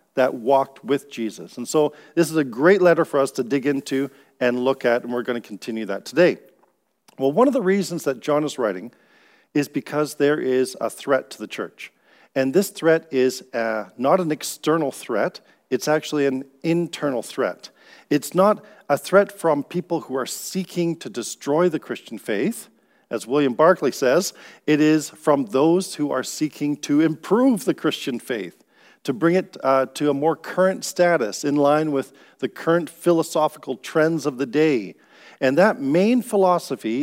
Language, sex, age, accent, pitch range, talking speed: English, male, 50-69, American, 130-165 Hz, 180 wpm